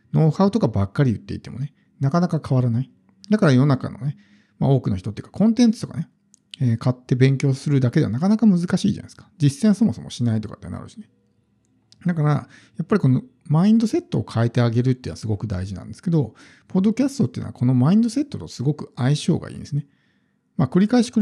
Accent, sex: native, male